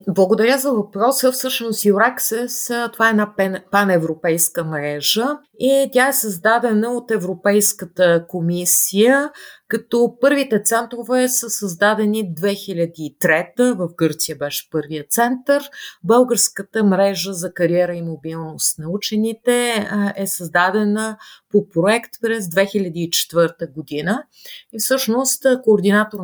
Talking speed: 105 wpm